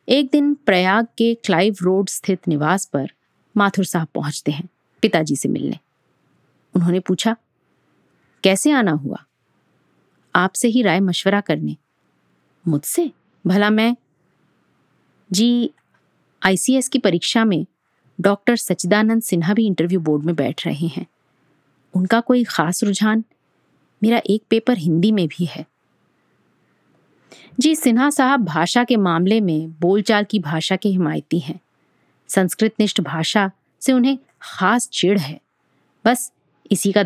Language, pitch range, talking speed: Hindi, 170-230 Hz, 125 wpm